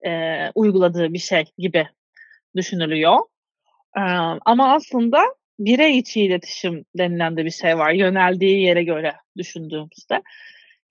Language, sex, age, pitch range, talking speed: Turkish, female, 30-49, 175-240 Hz, 120 wpm